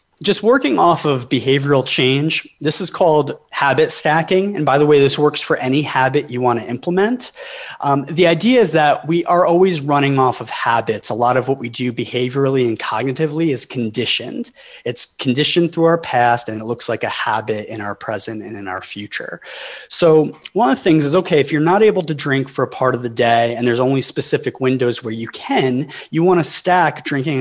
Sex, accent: male, American